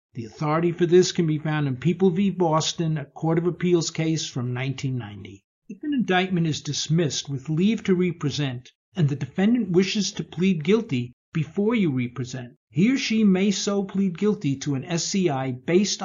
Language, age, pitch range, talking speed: English, 50-69, 145-190 Hz, 180 wpm